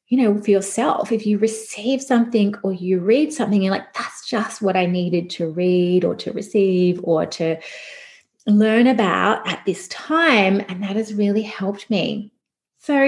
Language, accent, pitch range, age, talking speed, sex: English, Australian, 180-220 Hz, 30-49, 175 wpm, female